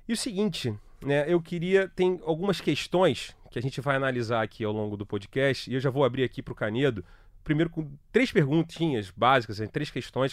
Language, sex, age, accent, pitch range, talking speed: Portuguese, male, 30-49, Brazilian, 105-165 Hz, 205 wpm